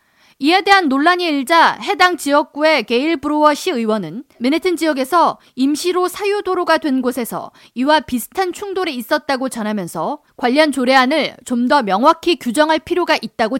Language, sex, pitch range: Korean, female, 250-345 Hz